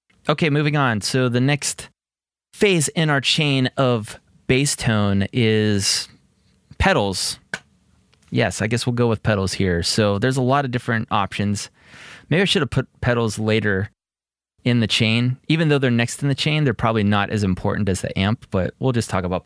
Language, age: English, 20-39